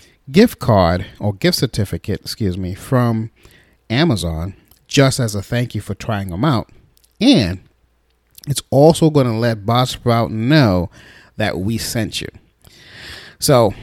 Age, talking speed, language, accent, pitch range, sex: 30-49, 135 wpm, English, American, 105-155 Hz, male